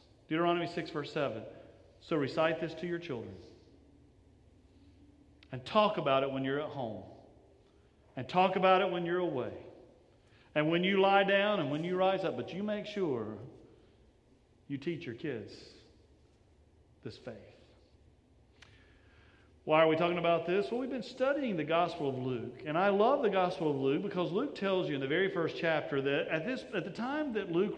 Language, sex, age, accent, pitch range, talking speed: English, male, 40-59, American, 155-210 Hz, 180 wpm